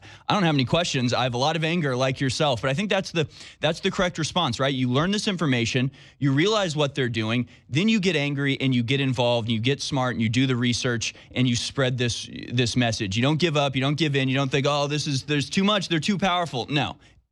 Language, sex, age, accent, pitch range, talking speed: English, male, 20-39, American, 120-145 Hz, 265 wpm